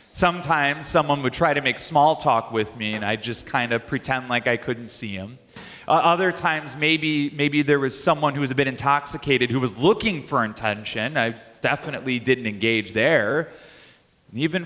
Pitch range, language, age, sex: 125-170 Hz, English, 30-49, male